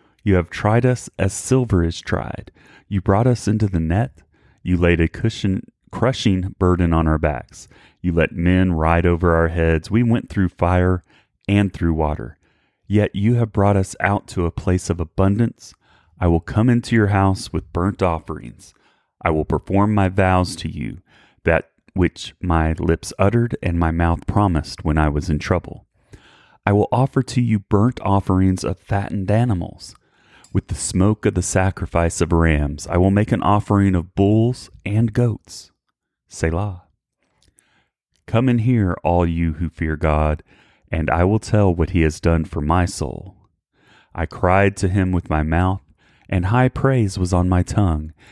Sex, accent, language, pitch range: male, American, English, 85-105 Hz